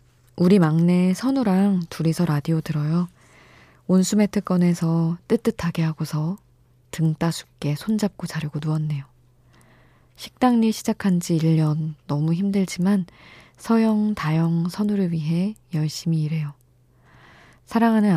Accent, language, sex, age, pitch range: native, Korean, female, 20-39, 135-185 Hz